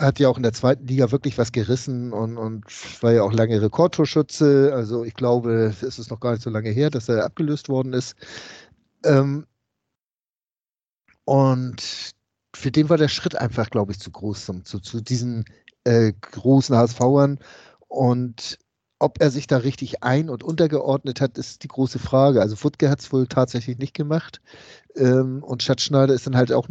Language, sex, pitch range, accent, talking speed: German, male, 115-140 Hz, German, 175 wpm